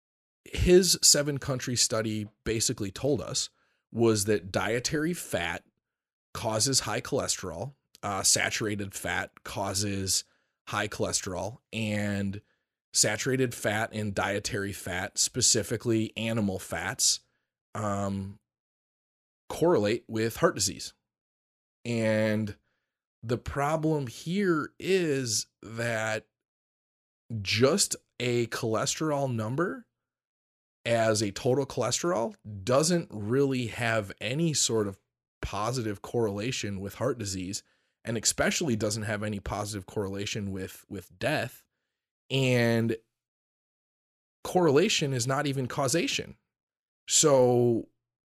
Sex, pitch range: male, 105-125 Hz